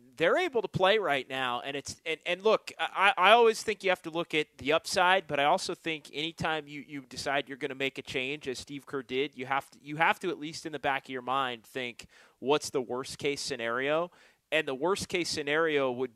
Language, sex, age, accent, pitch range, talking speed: English, male, 30-49, American, 135-175 Hz, 240 wpm